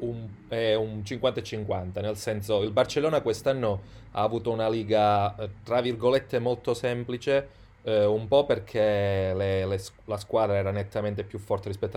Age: 30-49